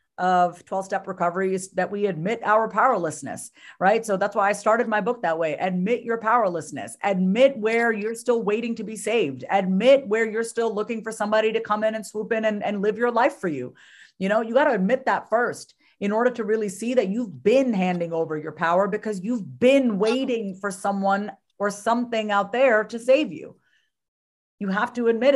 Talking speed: 205 wpm